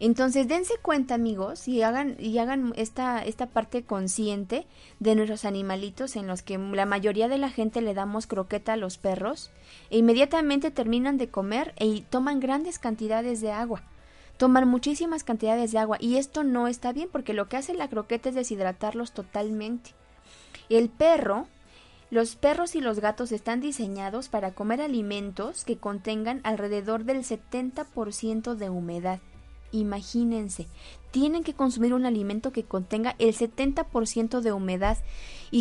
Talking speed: 155 wpm